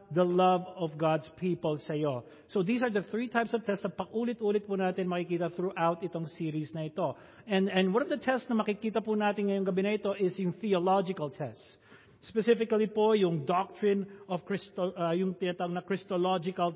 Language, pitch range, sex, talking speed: English, 150-185 Hz, male, 160 wpm